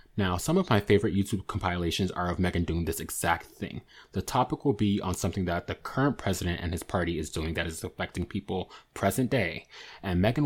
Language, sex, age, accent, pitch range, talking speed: English, male, 20-39, American, 85-110 Hz, 210 wpm